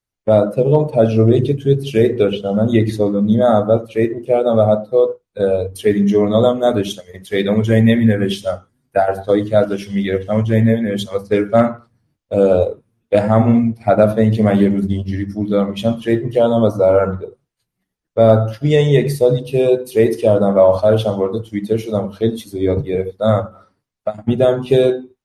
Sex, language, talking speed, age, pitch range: male, Persian, 165 wpm, 20-39, 100-115 Hz